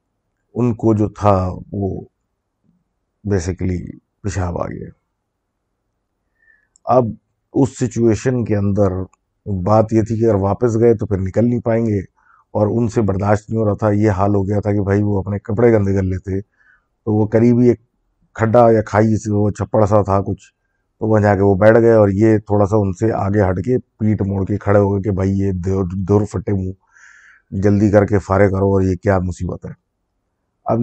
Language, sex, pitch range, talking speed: Urdu, male, 100-115 Hz, 195 wpm